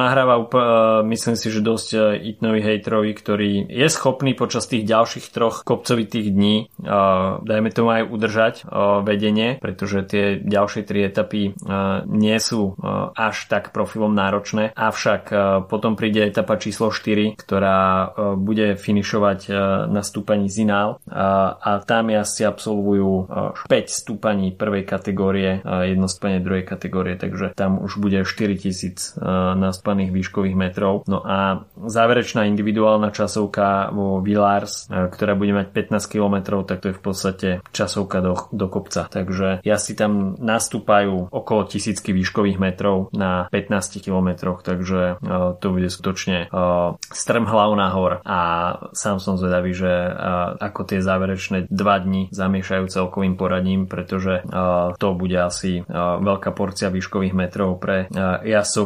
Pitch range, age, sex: 95-105 Hz, 20-39, male